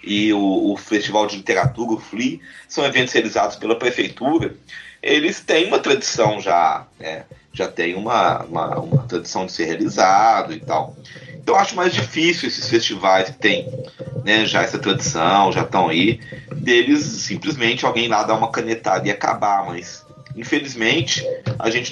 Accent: Brazilian